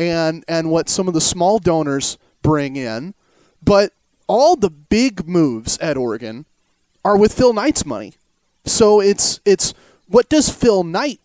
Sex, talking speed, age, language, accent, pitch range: male, 155 wpm, 30-49, English, American, 165-230 Hz